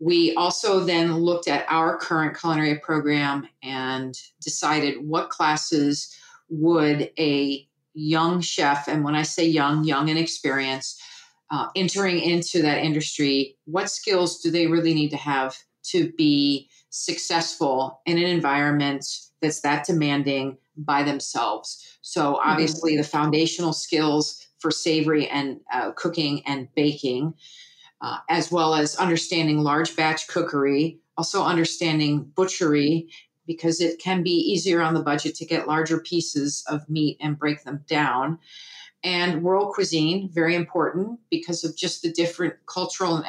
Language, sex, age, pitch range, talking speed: English, female, 40-59, 150-170 Hz, 140 wpm